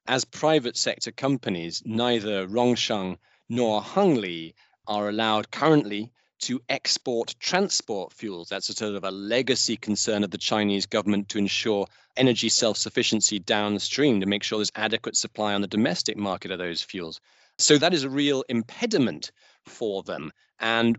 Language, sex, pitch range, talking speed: English, male, 100-125 Hz, 150 wpm